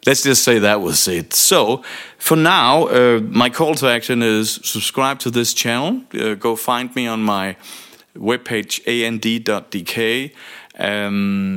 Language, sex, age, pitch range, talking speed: English, male, 40-59, 110-155 Hz, 145 wpm